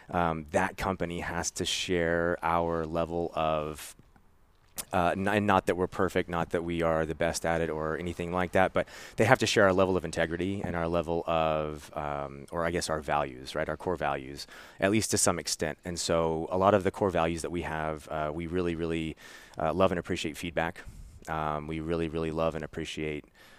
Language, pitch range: English, 80-90 Hz